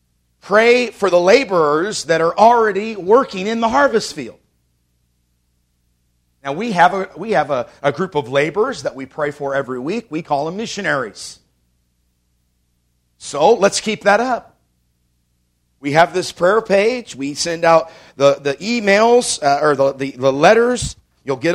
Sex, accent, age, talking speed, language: male, American, 50-69, 160 wpm, English